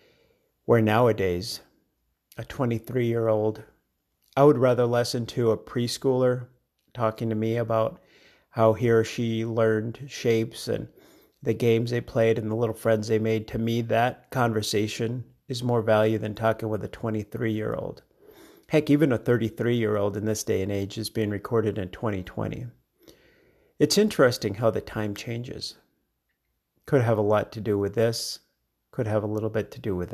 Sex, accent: male, American